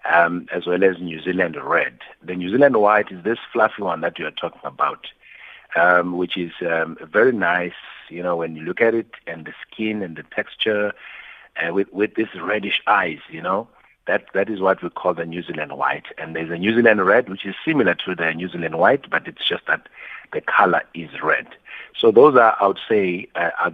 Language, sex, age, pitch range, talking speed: English, male, 50-69, 85-115 Hz, 220 wpm